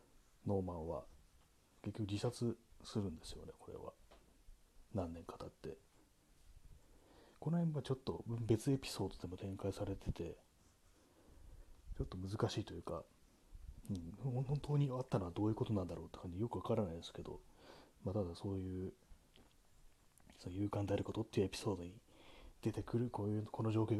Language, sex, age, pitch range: Japanese, male, 30-49, 90-120 Hz